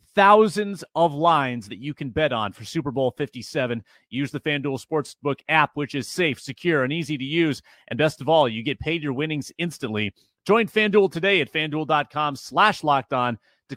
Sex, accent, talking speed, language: male, American, 190 wpm, English